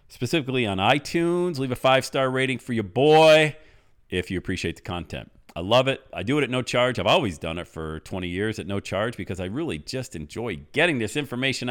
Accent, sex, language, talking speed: American, male, English, 215 wpm